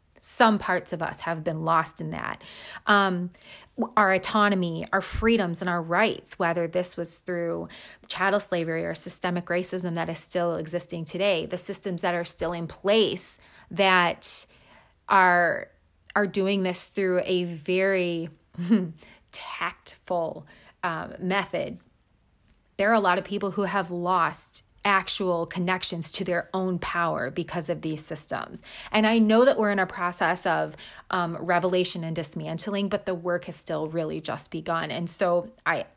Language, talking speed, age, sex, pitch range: English, 155 wpm, 30-49, female, 170-195 Hz